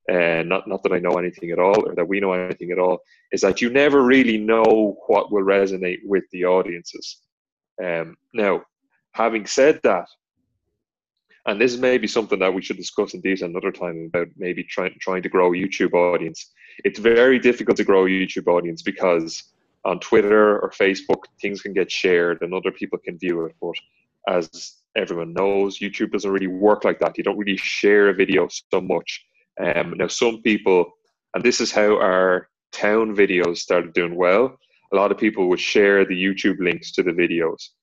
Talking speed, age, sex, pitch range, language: 190 wpm, 20-39, male, 90-110 Hz, English